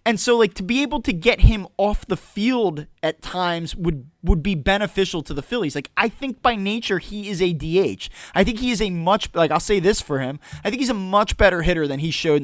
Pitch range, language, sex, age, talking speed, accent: 160-215 Hz, English, male, 20-39, 255 wpm, American